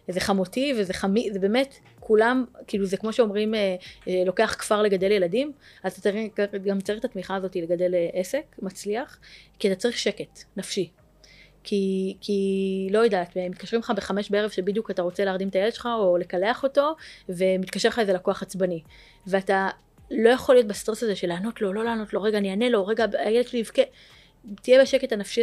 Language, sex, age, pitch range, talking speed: Hebrew, female, 20-39, 185-230 Hz, 185 wpm